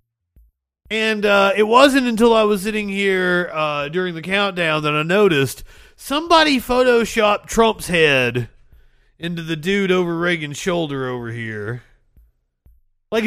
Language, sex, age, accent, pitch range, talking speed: English, male, 30-49, American, 120-190 Hz, 130 wpm